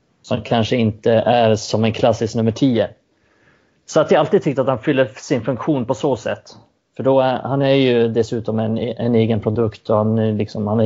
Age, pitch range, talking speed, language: 30-49, 110-130 Hz, 210 wpm, Swedish